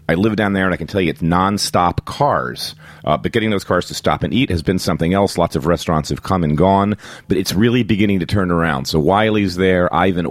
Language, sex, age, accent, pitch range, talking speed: English, male, 40-59, American, 75-105 Hz, 250 wpm